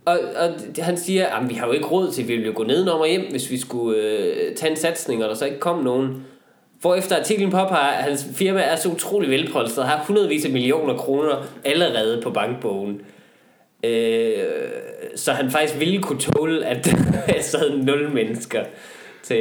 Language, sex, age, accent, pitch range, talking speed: Danish, male, 20-39, native, 135-205 Hz, 190 wpm